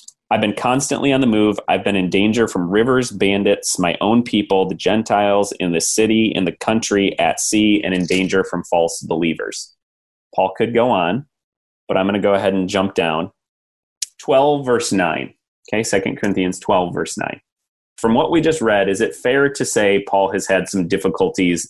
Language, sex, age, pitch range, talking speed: English, male, 30-49, 90-110 Hz, 190 wpm